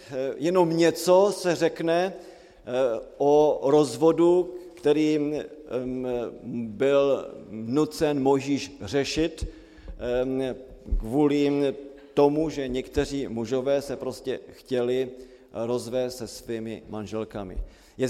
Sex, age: male, 40-59